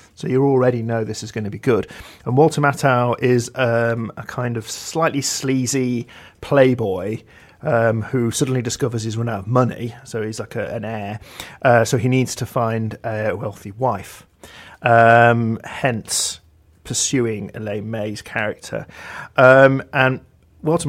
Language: English